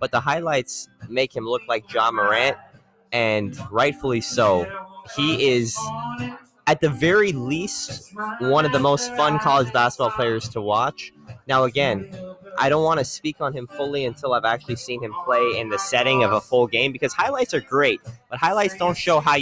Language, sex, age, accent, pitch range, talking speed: English, male, 20-39, American, 125-160 Hz, 185 wpm